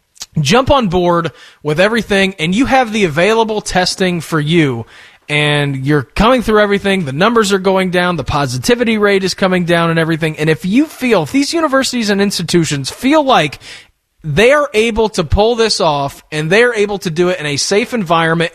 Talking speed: 195 wpm